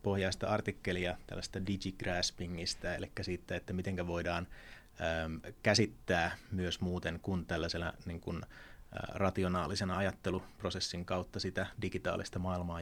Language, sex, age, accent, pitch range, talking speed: Finnish, male, 30-49, native, 90-105 Hz, 105 wpm